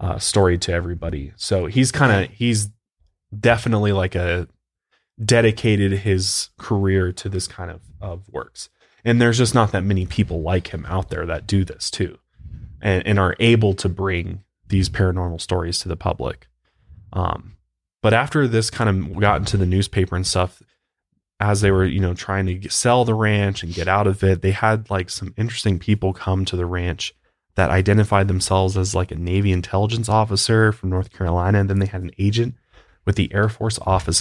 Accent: American